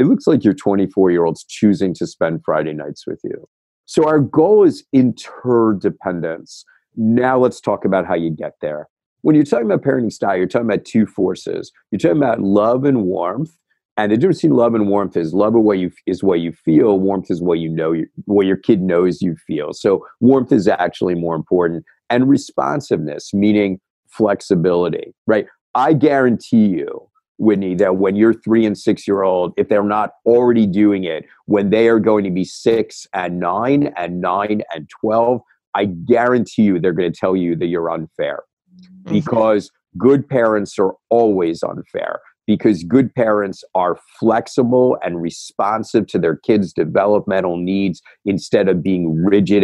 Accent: American